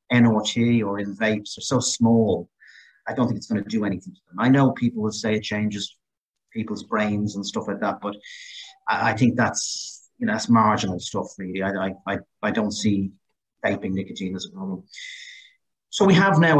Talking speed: 195 wpm